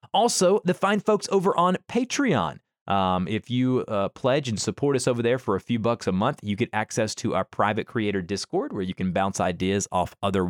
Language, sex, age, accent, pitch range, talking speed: English, male, 30-49, American, 100-140 Hz, 215 wpm